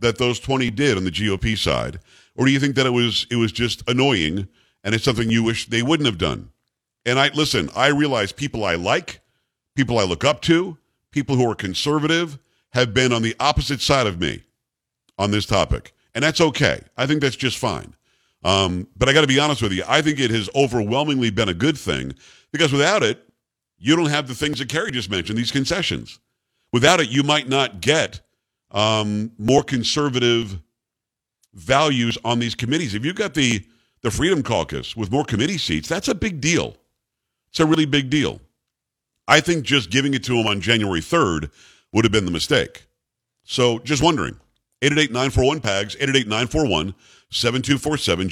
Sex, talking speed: male, 185 wpm